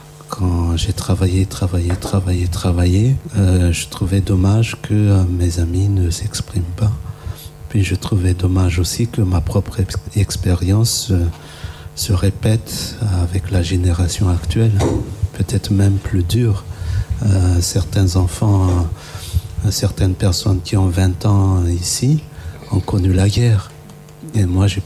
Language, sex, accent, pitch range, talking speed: French, male, French, 90-105 Hz, 135 wpm